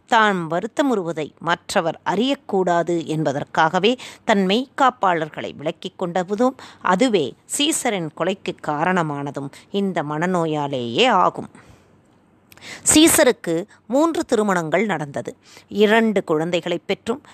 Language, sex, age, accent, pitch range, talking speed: Tamil, female, 20-39, native, 165-235 Hz, 80 wpm